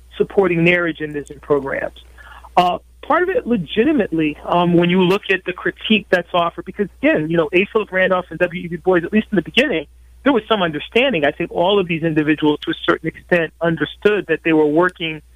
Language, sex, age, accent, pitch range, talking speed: English, male, 40-59, American, 160-190 Hz, 205 wpm